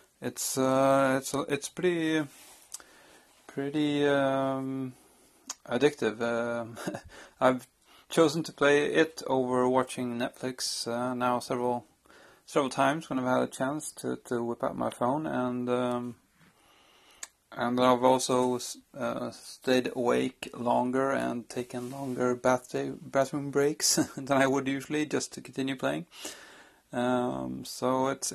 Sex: male